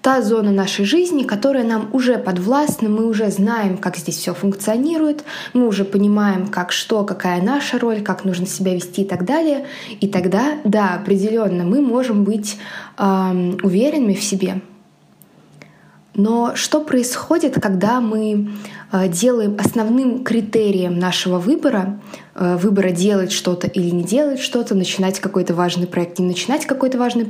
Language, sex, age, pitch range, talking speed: Russian, female, 20-39, 190-250 Hz, 145 wpm